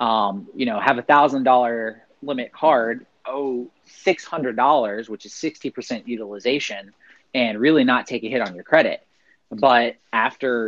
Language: English